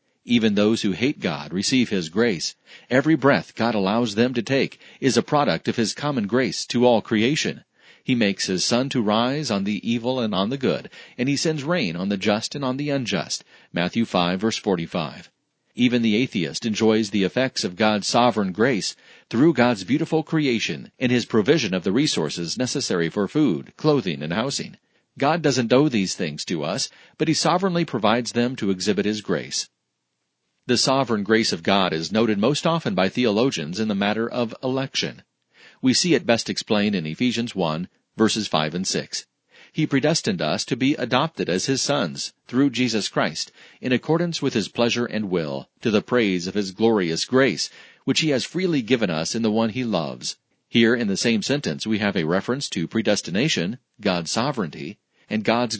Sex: male